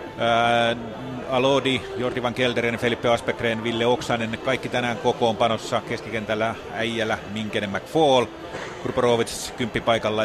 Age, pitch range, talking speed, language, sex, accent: 30-49, 110-125 Hz, 105 wpm, Finnish, male, native